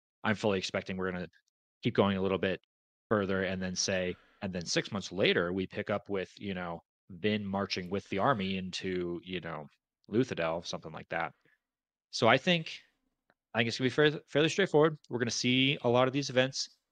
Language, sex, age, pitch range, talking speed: English, male, 30-49, 95-115 Hz, 200 wpm